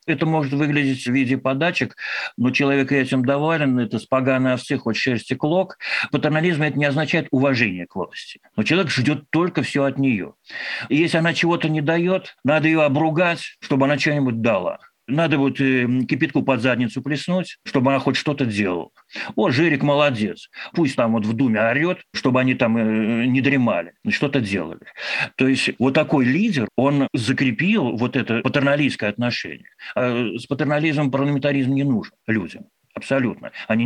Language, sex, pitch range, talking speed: Russian, male, 125-155 Hz, 165 wpm